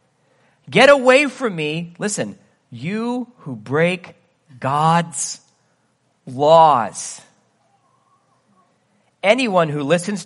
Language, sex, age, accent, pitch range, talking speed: English, male, 40-59, American, 160-265 Hz, 75 wpm